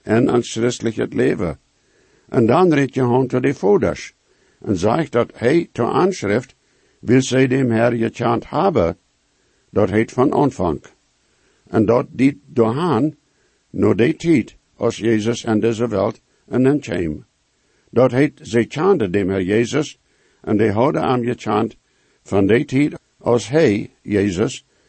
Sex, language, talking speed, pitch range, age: male, English, 160 wpm, 110-130 Hz, 60-79